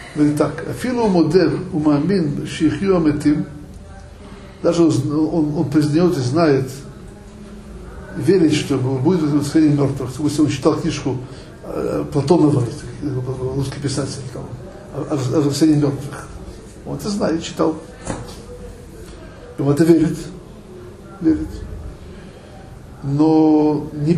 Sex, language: male, Russian